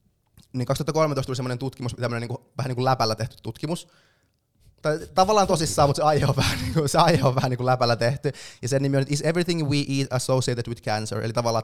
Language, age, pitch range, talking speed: Finnish, 20-39, 115-140 Hz, 215 wpm